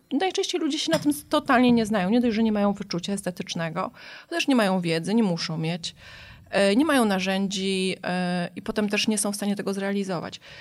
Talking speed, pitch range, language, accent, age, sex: 190 wpm, 190-235 Hz, Polish, native, 30-49, female